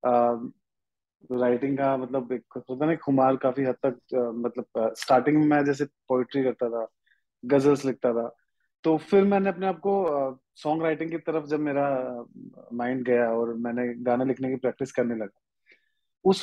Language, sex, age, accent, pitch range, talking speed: English, male, 30-49, Indian, 130-180 Hz, 150 wpm